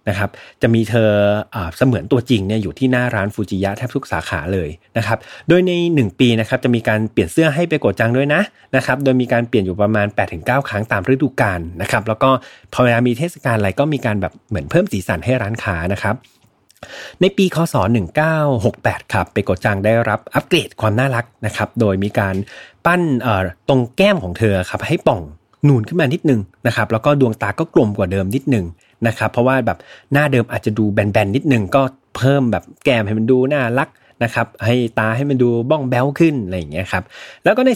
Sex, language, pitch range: male, Thai, 105-135 Hz